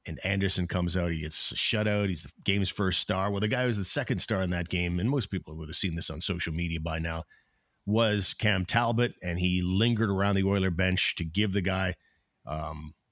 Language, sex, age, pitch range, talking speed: English, male, 40-59, 90-100 Hz, 230 wpm